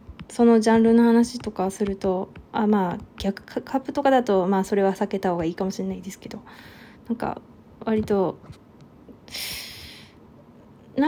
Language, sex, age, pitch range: Japanese, female, 20-39, 200-245 Hz